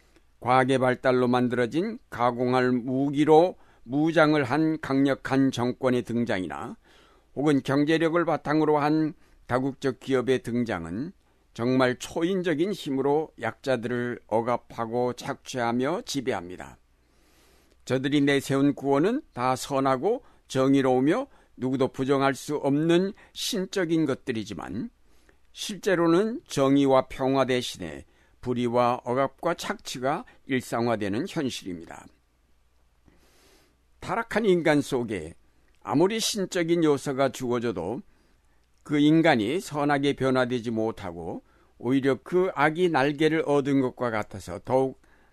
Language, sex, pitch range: Korean, male, 115-145 Hz